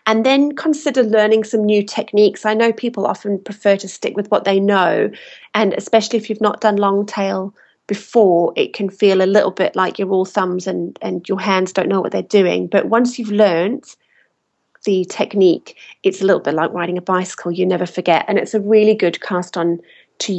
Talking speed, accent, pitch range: 210 wpm, British, 185-235 Hz